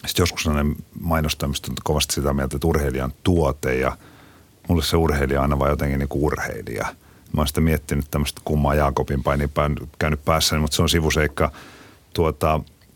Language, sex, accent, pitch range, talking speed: Finnish, male, native, 70-80 Hz, 160 wpm